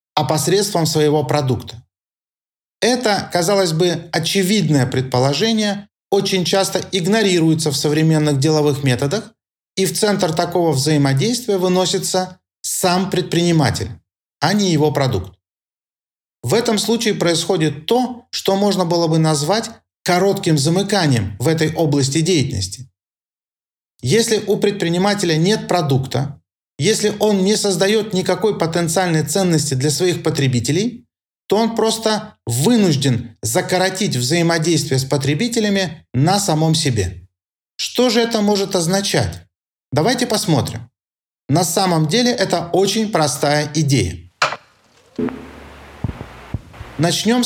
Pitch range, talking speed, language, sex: 145-195 Hz, 105 wpm, Russian, male